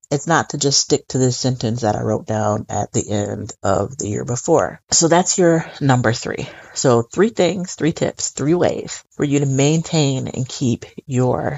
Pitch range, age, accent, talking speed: 130-170 Hz, 30-49, American, 195 wpm